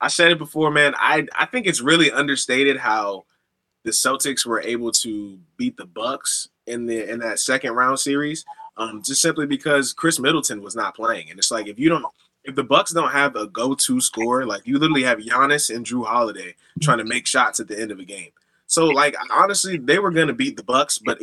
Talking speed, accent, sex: 220 wpm, American, male